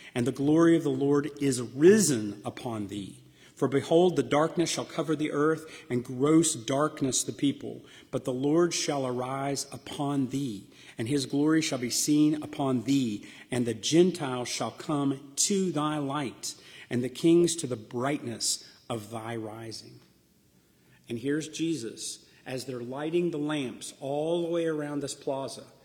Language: English